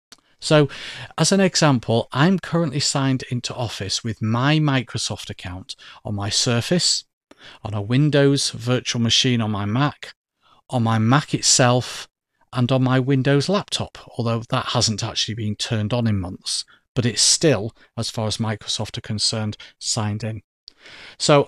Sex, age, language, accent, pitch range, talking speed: male, 40-59, English, British, 110-145 Hz, 150 wpm